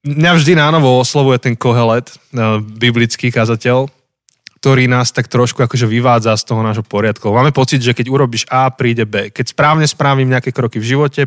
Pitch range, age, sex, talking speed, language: 115-140 Hz, 20-39, male, 175 wpm, Slovak